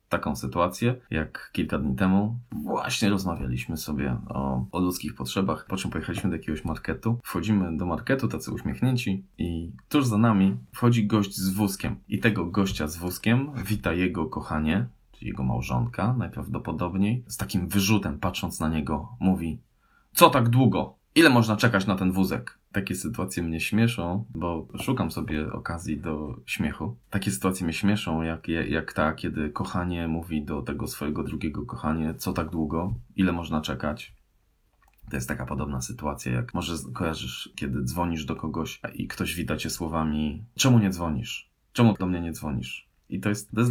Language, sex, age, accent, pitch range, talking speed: Polish, male, 20-39, native, 80-110 Hz, 165 wpm